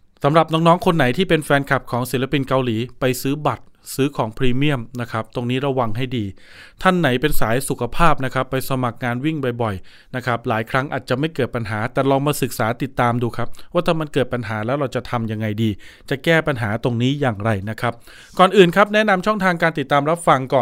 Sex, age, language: male, 20-39, Thai